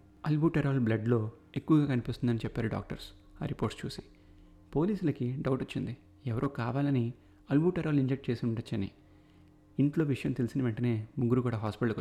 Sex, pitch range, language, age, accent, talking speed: male, 105-125 Hz, Telugu, 30-49, native, 125 wpm